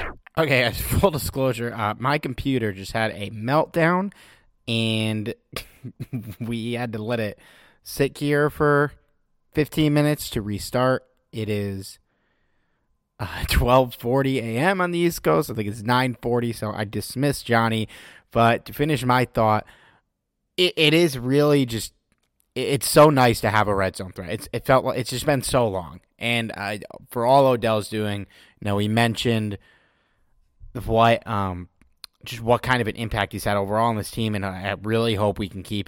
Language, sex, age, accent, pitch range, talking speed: English, male, 30-49, American, 105-130 Hz, 170 wpm